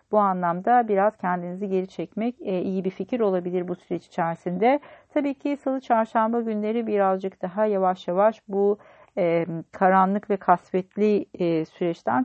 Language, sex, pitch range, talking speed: Turkish, female, 180-220 Hz, 130 wpm